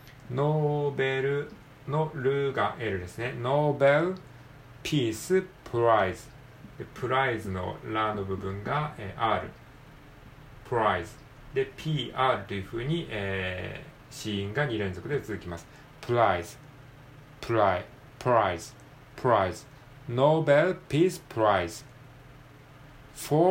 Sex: male